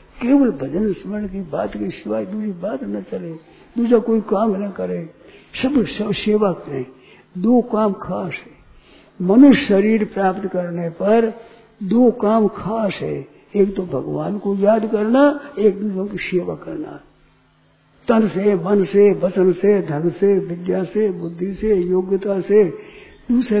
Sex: male